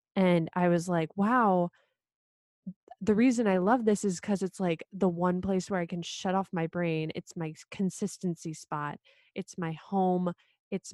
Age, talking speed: 20-39, 175 wpm